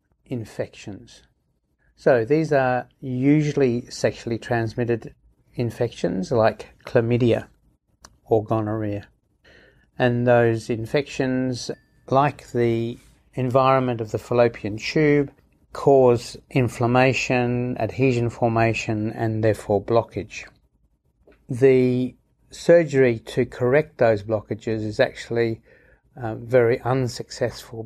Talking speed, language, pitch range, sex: 85 wpm, English, 110-130 Hz, male